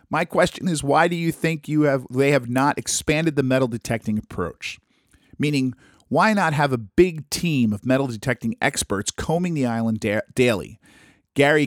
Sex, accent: male, American